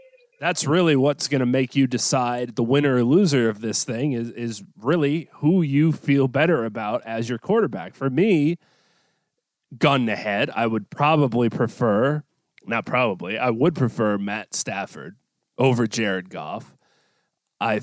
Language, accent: English, American